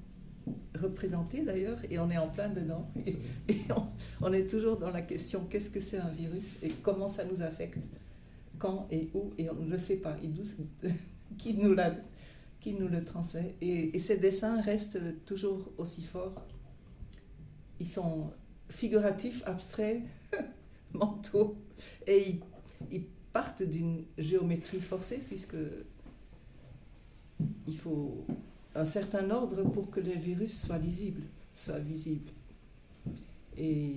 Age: 60-79